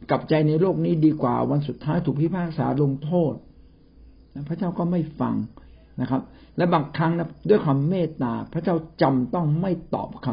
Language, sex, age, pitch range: Thai, male, 60-79, 105-150 Hz